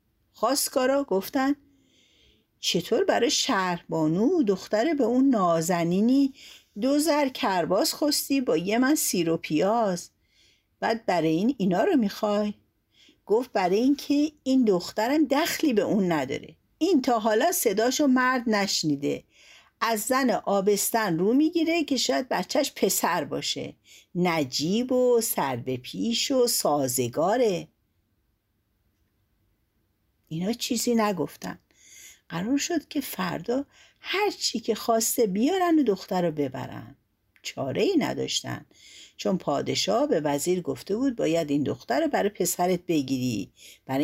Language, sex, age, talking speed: Persian, female, 50-69, 120 wpm